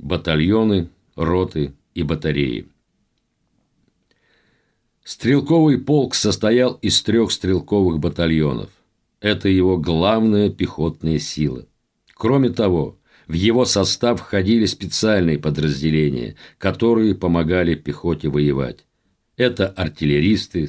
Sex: male